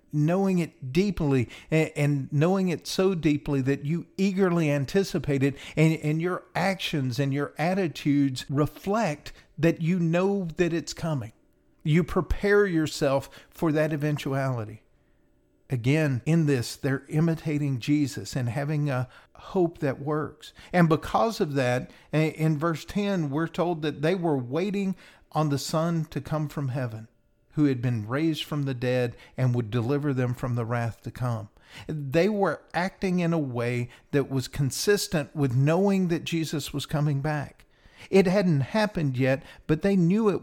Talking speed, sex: 155 wpm, male